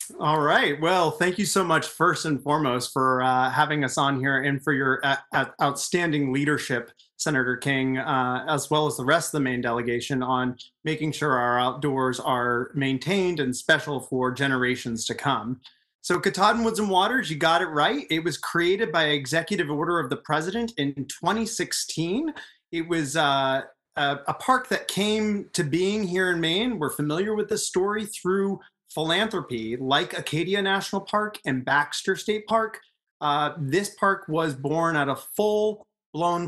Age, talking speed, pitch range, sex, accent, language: 30-49, 170 wpm, 140-190 Hz, male, American, English